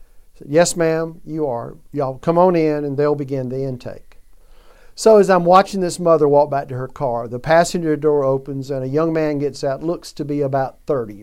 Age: 50-69